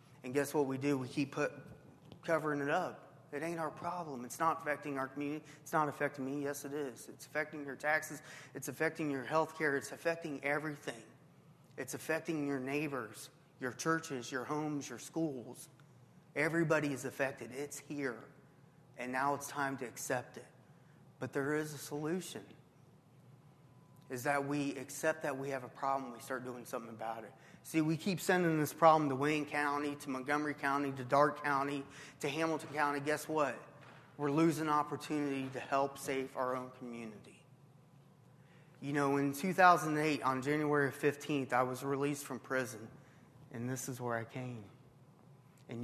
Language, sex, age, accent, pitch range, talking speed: English, male, 30-49, American, 130-150 Hz, 170 wpm